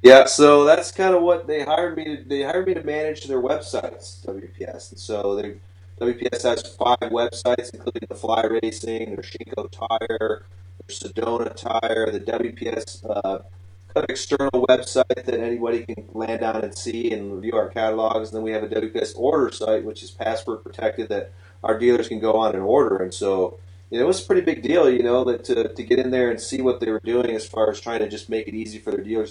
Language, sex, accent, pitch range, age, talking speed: English, male, American, 95-120 Hz, 30-49, 215 wpm